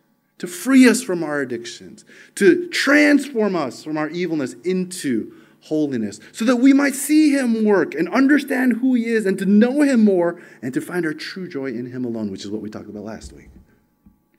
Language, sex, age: English, male, 30-49